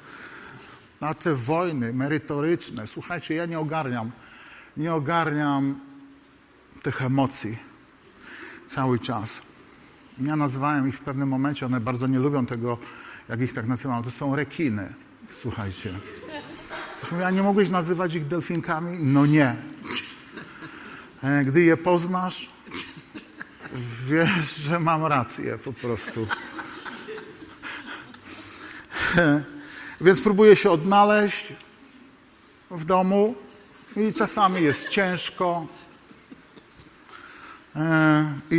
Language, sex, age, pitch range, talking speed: Polish, male, 50-69, 135-175 Hz, 100 wpm